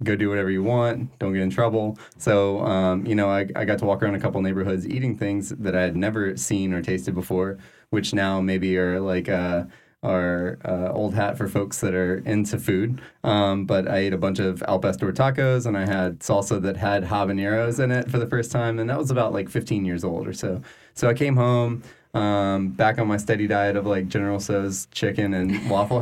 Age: 20-39